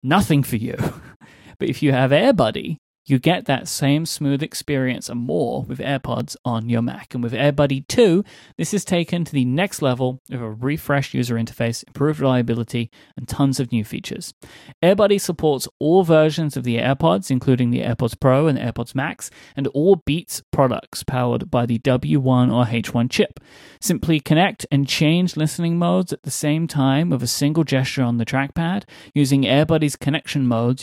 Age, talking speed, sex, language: 30-49, 180 wpm, male, English